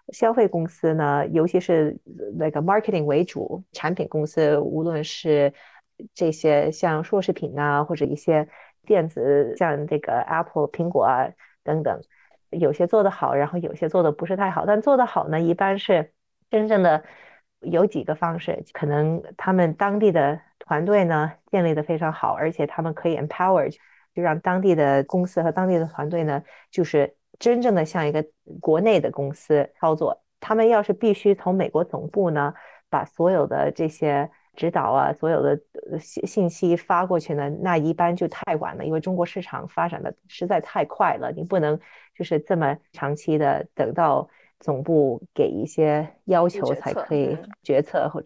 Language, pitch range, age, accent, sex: Chinese, 155-195 Hz, 30-49, native, female